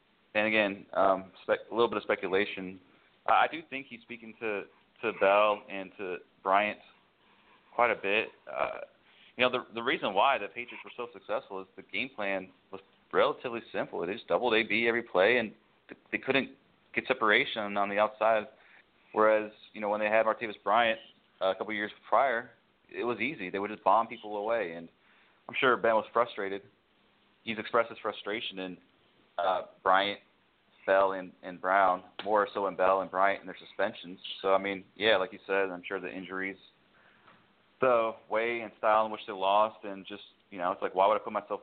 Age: 30-49